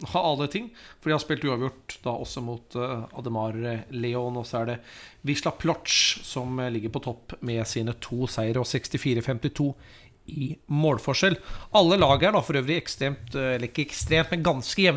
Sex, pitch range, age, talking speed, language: male, 115-150 Hz, 30-49, 195 wpm, English